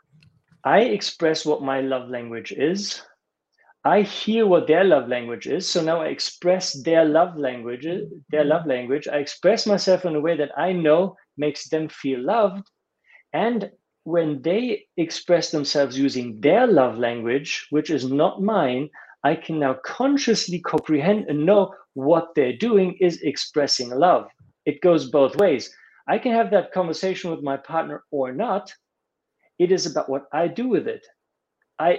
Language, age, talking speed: English, 50-69, 160 wpm